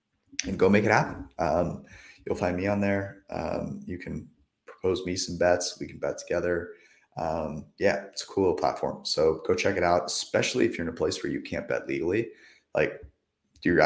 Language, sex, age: English, male, 30-49